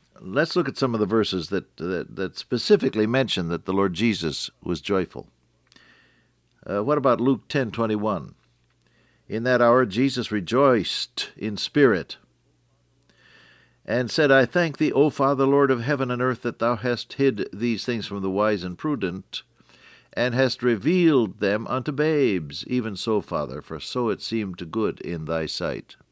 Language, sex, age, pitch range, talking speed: English, male, 60-79, 100-135 Hz, 160 wpm